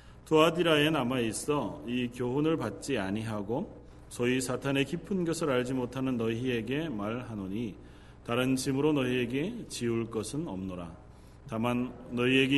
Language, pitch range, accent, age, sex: Korean, 100-140 Hz, native, 40-59, male